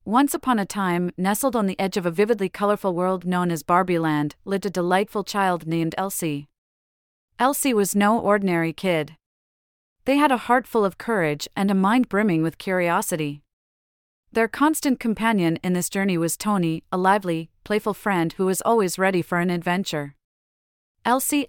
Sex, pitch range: female, 160-215 Hz